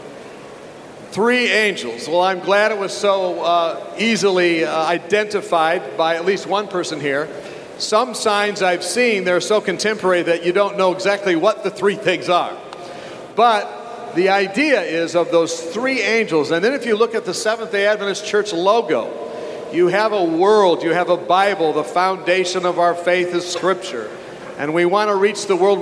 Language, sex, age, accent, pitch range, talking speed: English, male, 50-69, American, 175-215 Hz, 175 wpm